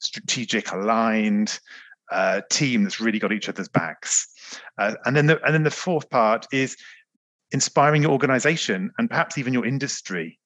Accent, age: British, 40-59